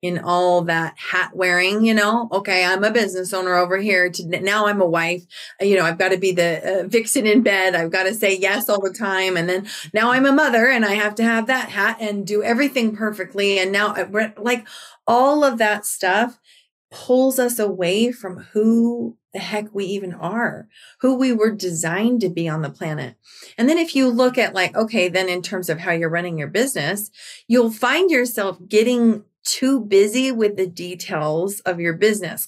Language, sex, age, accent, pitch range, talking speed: English, female, 30-49, American, 185-235 Hz, 205 wpm